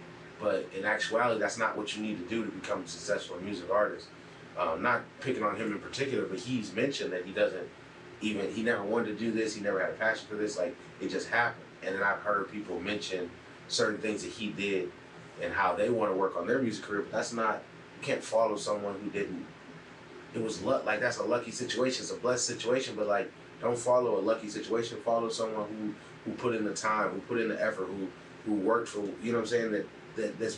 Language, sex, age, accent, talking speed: English, male, 30-49, American, 235 wpm